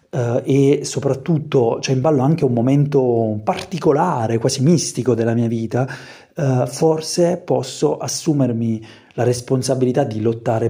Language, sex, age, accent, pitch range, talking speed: Italian, male, 30-49, native, 120-150 Hz, 120 wpm